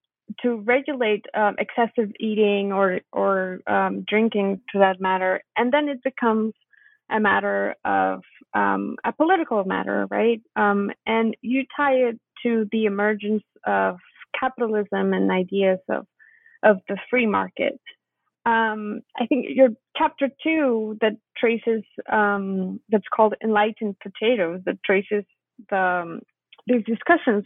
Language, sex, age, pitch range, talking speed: English, female, 30-49, 200-265 Hz, 130 wpm